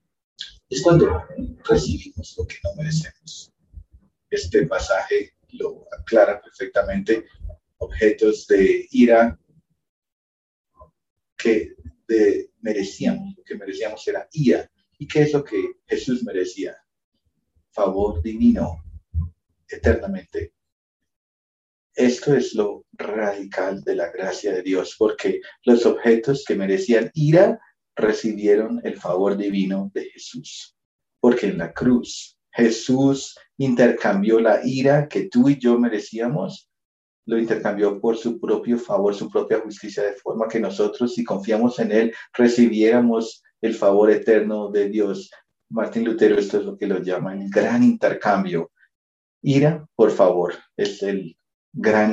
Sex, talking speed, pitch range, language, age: male, 125 wpm, 105-165 Hz, English, 40-59